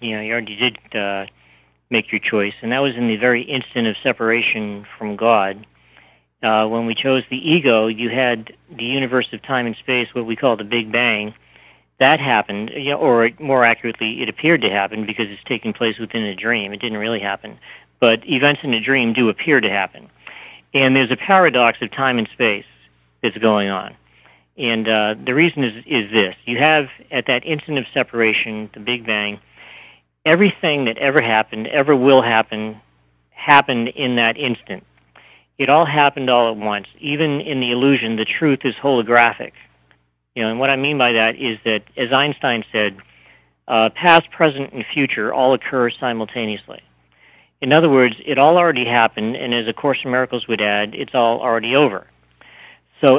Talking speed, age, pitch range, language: 185 wpm, 50-69, 105-130 Hz, English